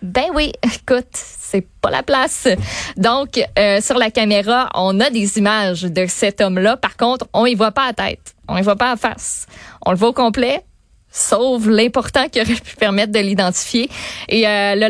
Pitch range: 200-245 Hz